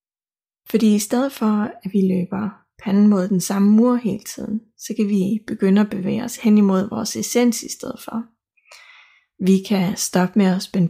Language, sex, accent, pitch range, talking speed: Danish, female, native, 190-225 Hz, 185 wpm